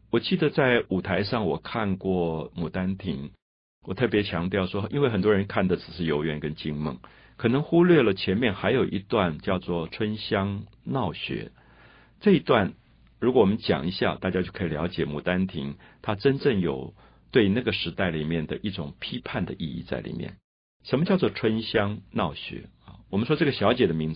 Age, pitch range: 50-69, 85-110 Hz